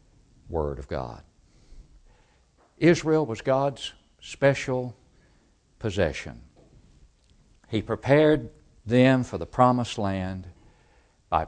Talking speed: 85 wpm